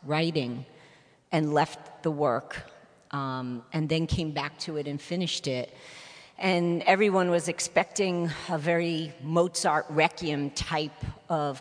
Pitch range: 150-175 Hz